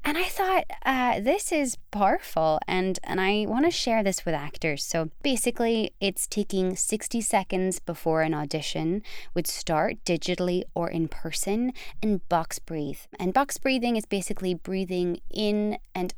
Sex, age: female, 20-39